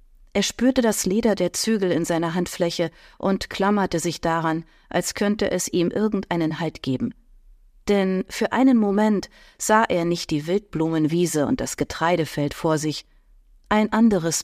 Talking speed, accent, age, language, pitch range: 150 wpm, German, 40-59, German, 165-215 Hz